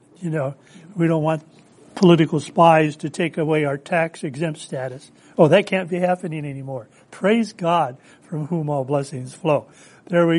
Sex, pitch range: male, 155-205 Hz